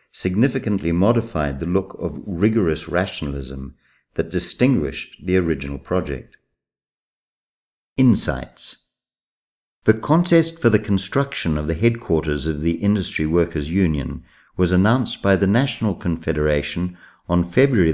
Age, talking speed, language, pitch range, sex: 50-69, 115 wpm, Italian, 75-100 Hz, male